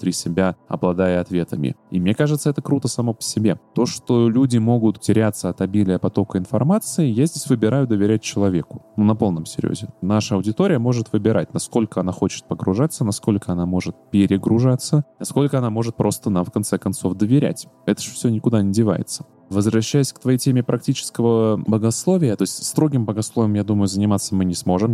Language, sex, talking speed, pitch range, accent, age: Russian, male, 175 wpm, 95-120 Hz, native, 20-39